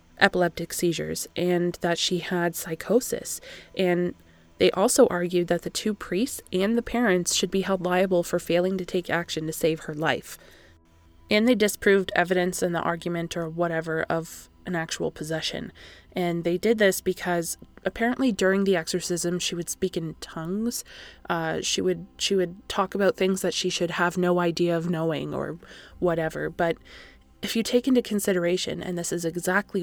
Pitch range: 170-200 Hz